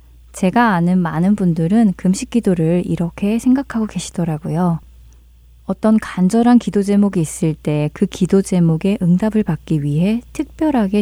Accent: native